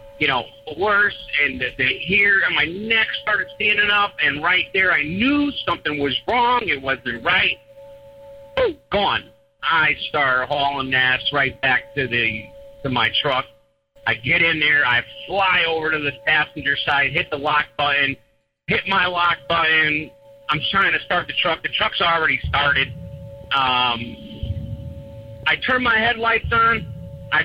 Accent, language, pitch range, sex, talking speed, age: American, English, 130-215 Hz, male, 155 wpm, 50-69